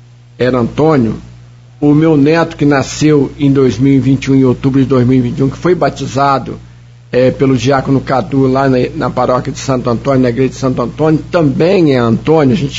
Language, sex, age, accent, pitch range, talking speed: Portuguese, male, 60-79, Brazilian, 130-165 Hz, 175 wpm